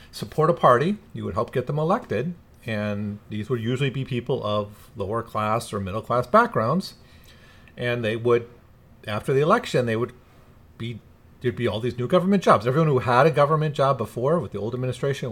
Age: 40-59